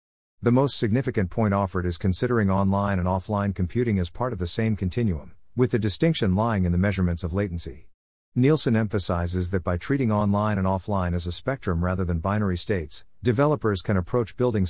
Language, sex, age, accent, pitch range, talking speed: English, male, 50-69, American, 90-115 Hz, 185 wpm